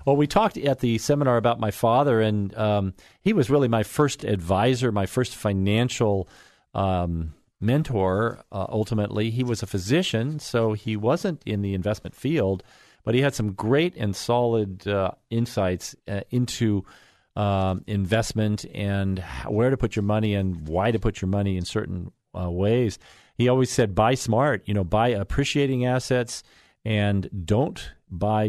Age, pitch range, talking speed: 40-59, 95-120 Hz, 160 wpm